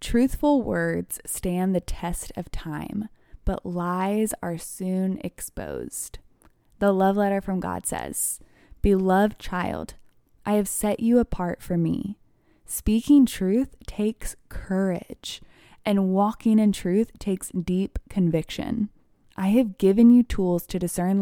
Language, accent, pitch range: English, American, 180-215 Hz